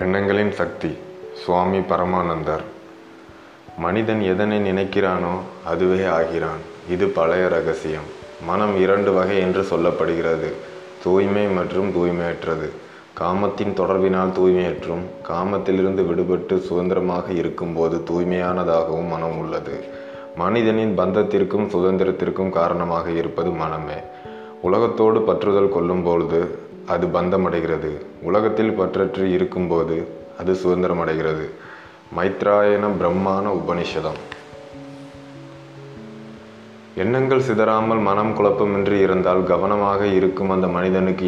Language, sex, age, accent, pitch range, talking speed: Tamil, male, 20-39, native, 85-100 Hz, 90 wpm